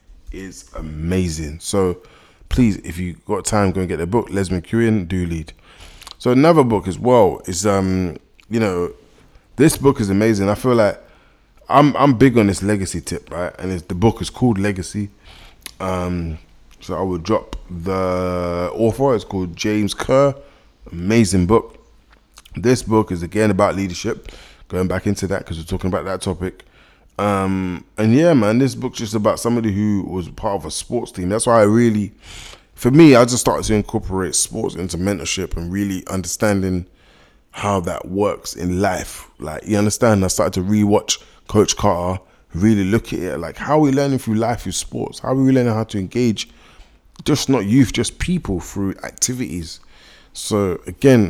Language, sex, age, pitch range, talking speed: English, male, 20-39, 90-110 Hz, 180 wpm